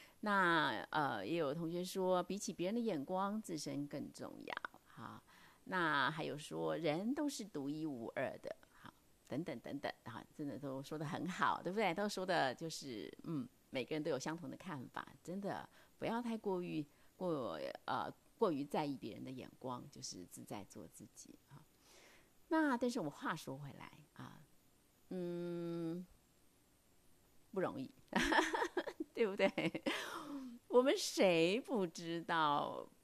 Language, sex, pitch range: Chinese, female, 165-230 Hz